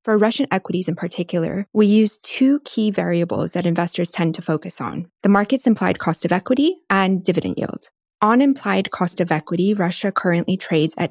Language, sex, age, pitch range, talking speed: English, female, 20-39, 165-205 Hz, 185 wpm